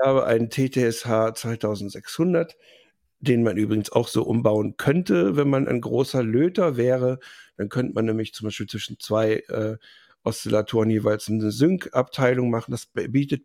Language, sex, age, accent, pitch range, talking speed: German, male, 50-69, German, 110-140 Hz, 150 wpm